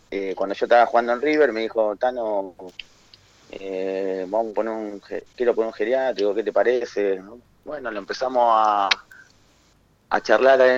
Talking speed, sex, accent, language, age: 155 wpm, male, Argentinian, Spanish, 30-49